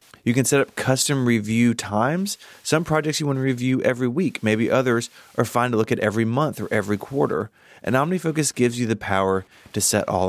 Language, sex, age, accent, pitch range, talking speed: English, male, 30-49, American, 105-135 Hz, 210 wpm